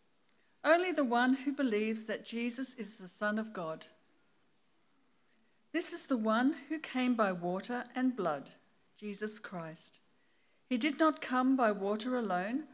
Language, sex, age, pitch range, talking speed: English, female, 50-69, 200-265 Hz, 145 wpm